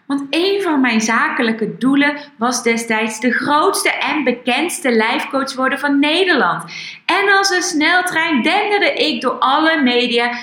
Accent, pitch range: Dutch, 230-315 Hz